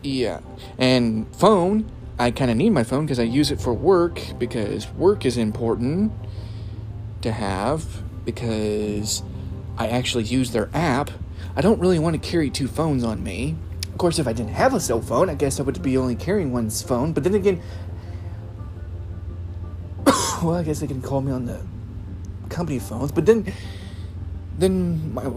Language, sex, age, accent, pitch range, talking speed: English, male, 30-49, American, 100-140 Hz, 175 wpm